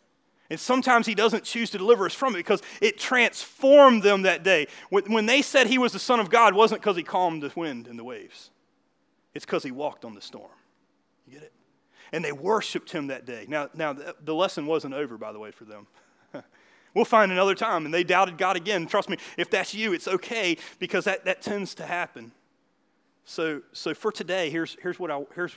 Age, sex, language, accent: 30-49, male, English, American